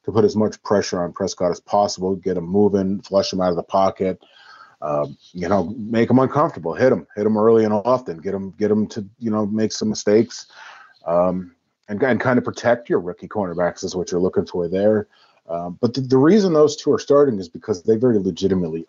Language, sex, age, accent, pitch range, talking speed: English, male, 30-49, American, 90-105 Hz, 220 wpm